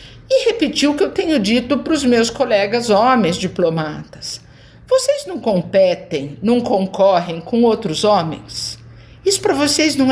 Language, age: Portuguese, 50-69